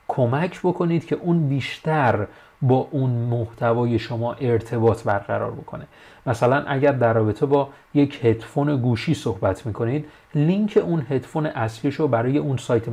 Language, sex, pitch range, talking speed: Persian, male, 115-145 Hz, 140 wpm